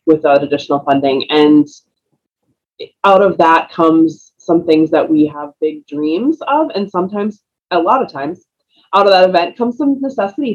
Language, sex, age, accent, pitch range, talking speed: English, female, 20-39, American, 150-180 Hz, 165 wpm